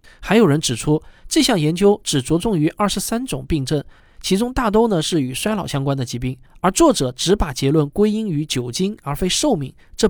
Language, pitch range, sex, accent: Chinese, 135-195 Hz, male, native